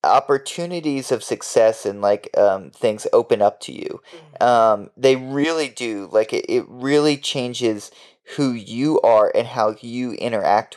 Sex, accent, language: male, American, English